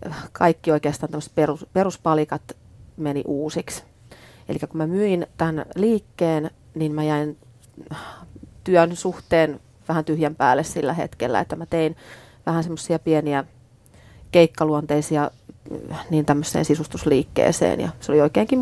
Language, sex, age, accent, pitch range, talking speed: Finnish, female, 30-49, native, 145-175 Hz, 115 wpm